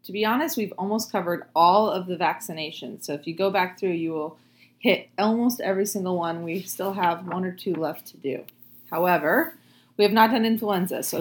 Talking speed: 210 wpm